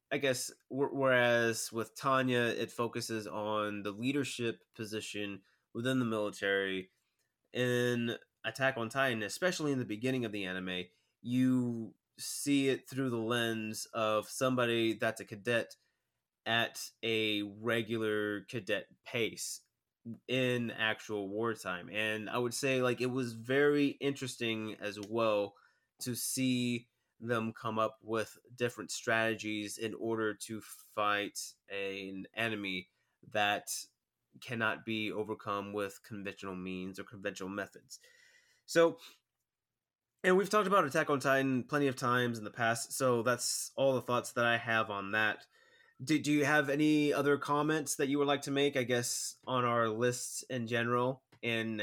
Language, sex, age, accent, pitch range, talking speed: English, male, 20-39, American, 110-130 Hz, 145 wpm